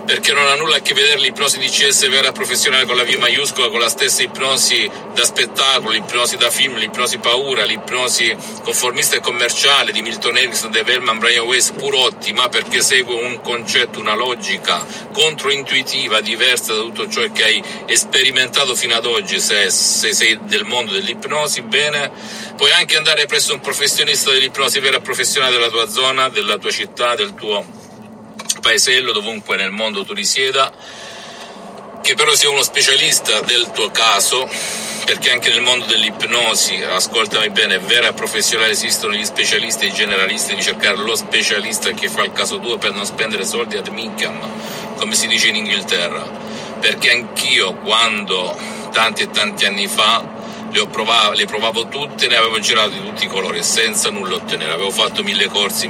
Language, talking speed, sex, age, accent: Italian, 170 wpm, male, 50-69, native